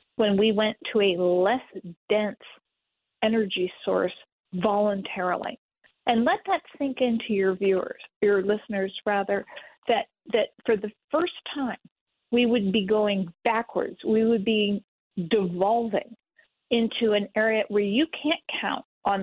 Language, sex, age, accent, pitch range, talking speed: English, female, 40-59, American, 195-240 Hz, 135 wpm